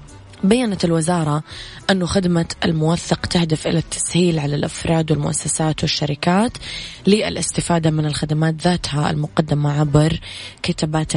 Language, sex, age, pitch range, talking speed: Arabic, female, 20-39, 145-170 Hz, 100 wpm